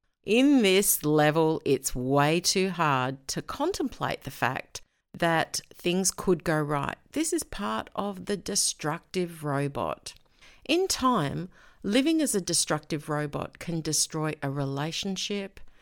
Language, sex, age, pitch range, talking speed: English, female, 50-69, 150-210 Hz, 130 wpm